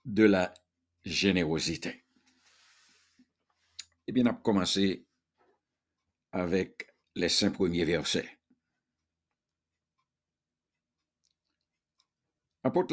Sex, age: male, 60-79